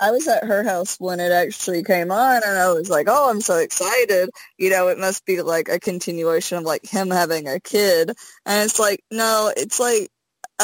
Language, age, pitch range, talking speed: English, 20-39, 175-220 Hz, 220 wpm